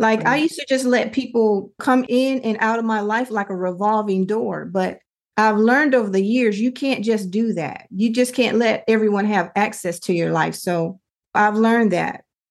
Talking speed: 205 wpm